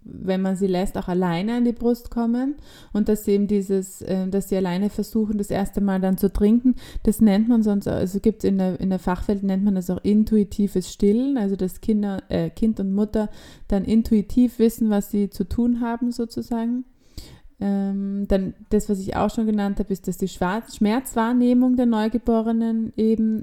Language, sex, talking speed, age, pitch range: German, female, 190 wpm, 20-39, 190-220 Hz